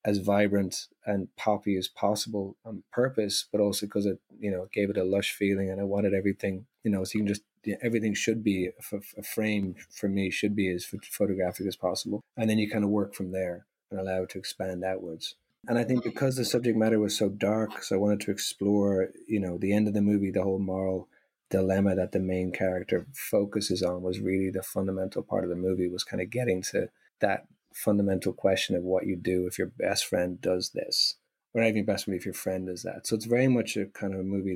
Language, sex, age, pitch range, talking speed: English, male, 30-49, 95-105 Hz, 240 wpm